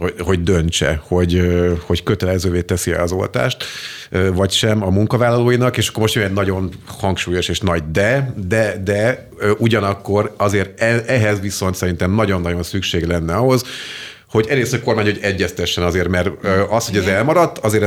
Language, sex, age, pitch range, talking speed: Hungarian, male, 30-49, 90-110 Hz, 150 wpm